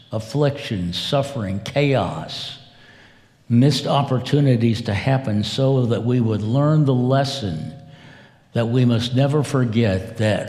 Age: 60-79